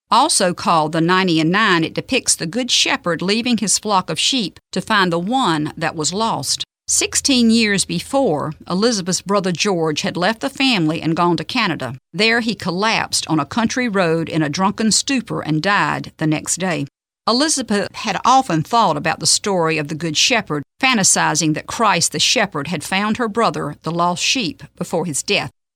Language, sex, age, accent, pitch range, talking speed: English, female, 50-69, American, 160-225 Hz, 185 wpm